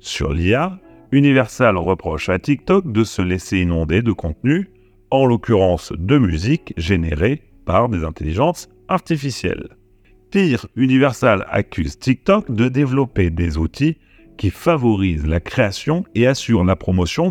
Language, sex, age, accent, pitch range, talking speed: French, male, 40-59, French, 95-125 Hz, 130 wpm